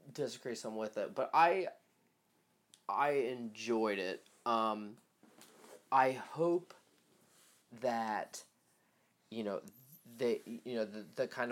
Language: English